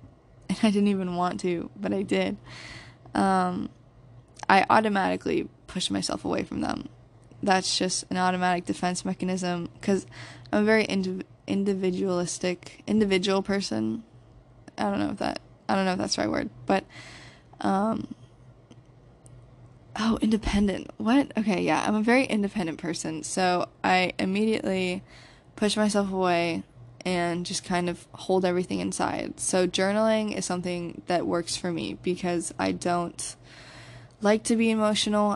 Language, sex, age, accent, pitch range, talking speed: English, female, 10-29, American, 125-190 Hz, 145 wpm